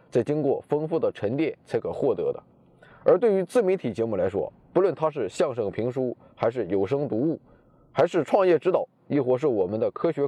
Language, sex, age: Chinese, male, 20-39